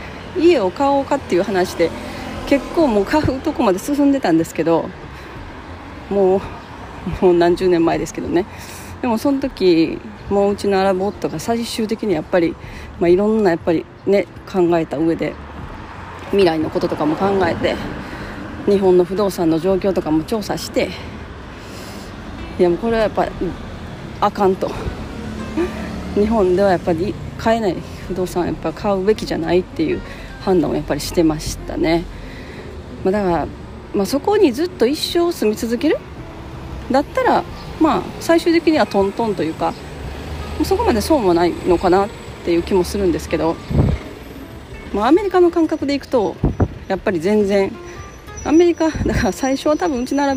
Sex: female